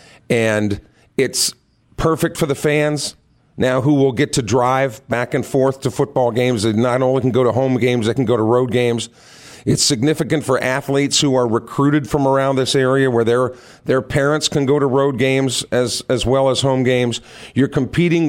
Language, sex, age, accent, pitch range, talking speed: English, male, 50-69, American, 125-145 Hz, 195 wpm